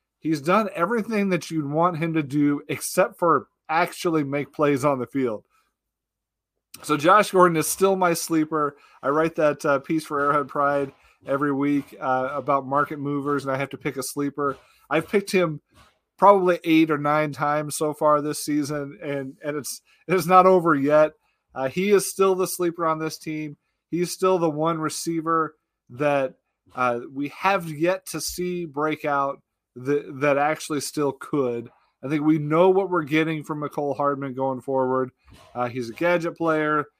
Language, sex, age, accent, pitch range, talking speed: English, male, 30-49, American, 140-165 Hz, 175 wpm